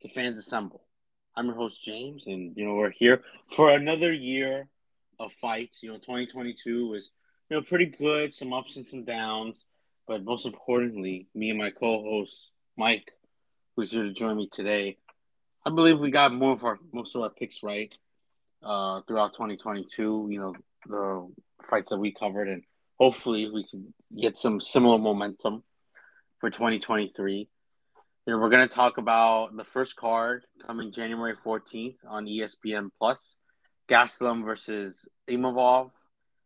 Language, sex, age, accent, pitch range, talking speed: English, male, 30-49, American, 105-125 Hz, 155 wpm